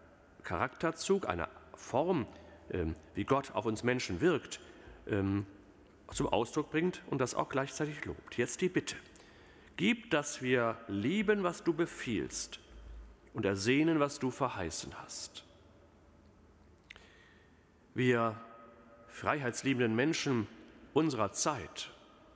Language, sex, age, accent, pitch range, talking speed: German, male, 40-59, German, 100-145 Hz, 100 wpm